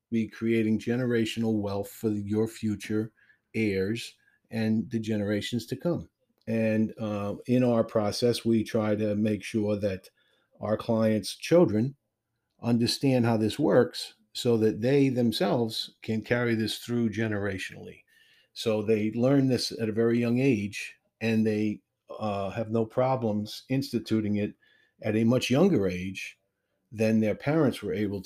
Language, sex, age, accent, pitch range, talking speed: English, male, 50-69, American, 105-115 Hz, 140 wpm